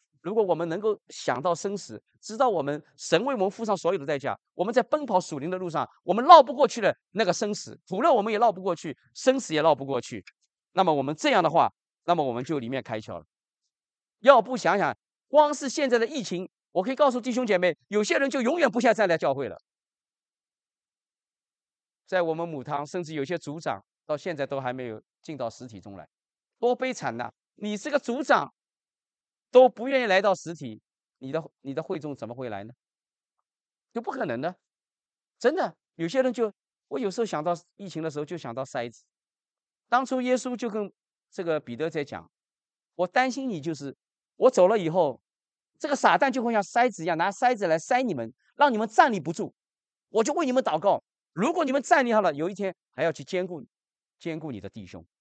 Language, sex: English, male